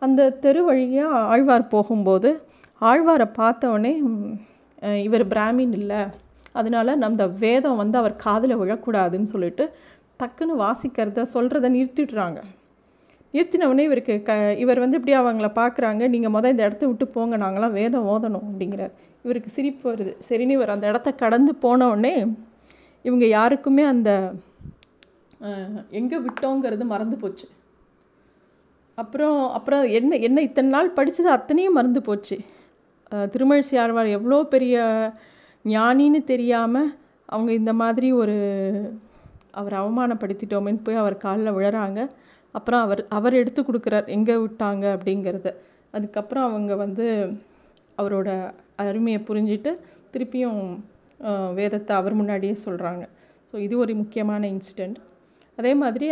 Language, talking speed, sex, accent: Tamil, 115 wpm, female, native